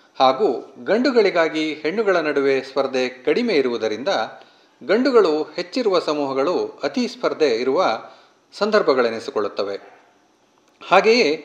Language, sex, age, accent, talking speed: Kannada, male, 40-59, native, 80 wpm